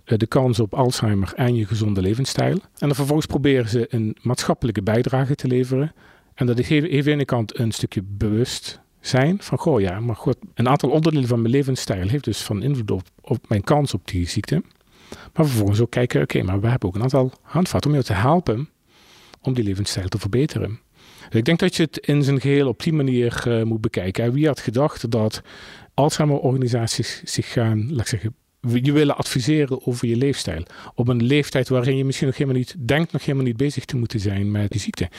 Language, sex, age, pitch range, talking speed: Dutch, male, 40-59, 115-140 Hz, 215 wpm